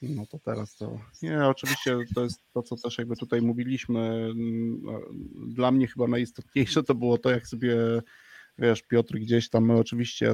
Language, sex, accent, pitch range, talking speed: Polish, male, native, 115-125 Hz, 165 wpm